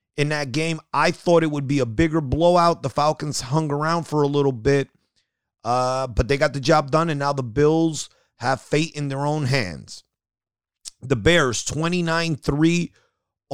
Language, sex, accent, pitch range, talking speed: English, male, American, 115-150 Hz, 175 wpm